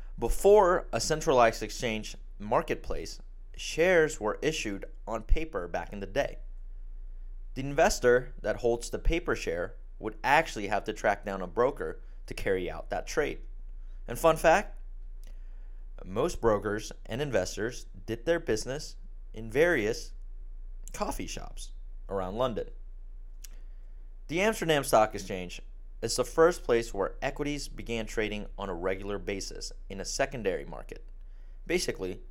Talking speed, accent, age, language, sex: 130 wpm, American, 30-49, English, male